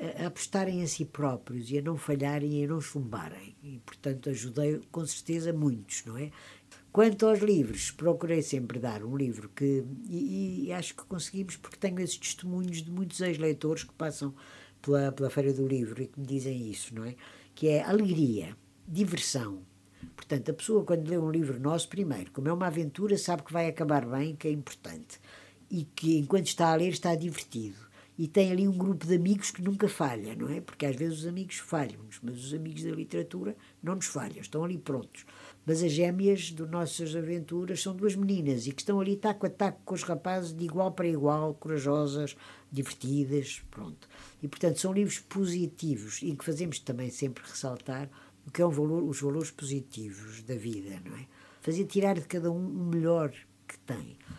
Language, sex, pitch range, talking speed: Portuguese, female, 135-175 Hz, 195 wpm